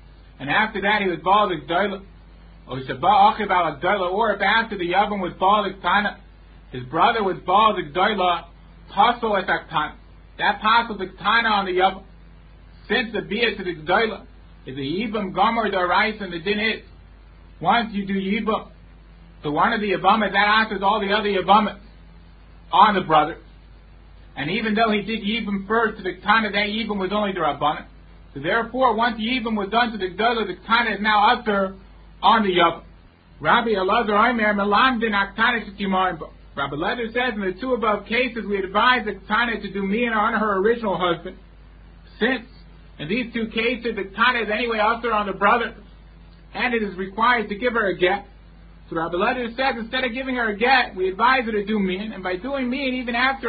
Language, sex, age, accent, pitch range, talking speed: English, male, 50-69, American, 190-230 Hz, 185 wpm